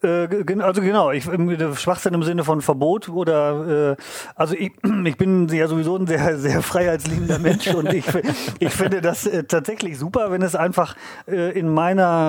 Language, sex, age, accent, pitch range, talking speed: German, male, 30-49, German, 145-180 Hz, 155 wpm